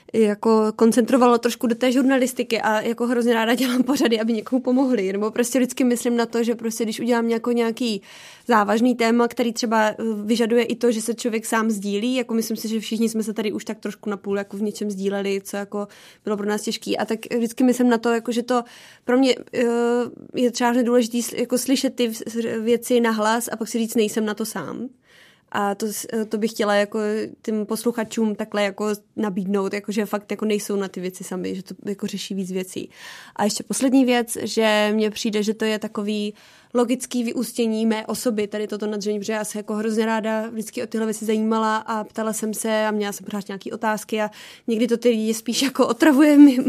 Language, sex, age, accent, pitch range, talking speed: Czech, female, 20-39, native, 215-240 Hz, 195 wpm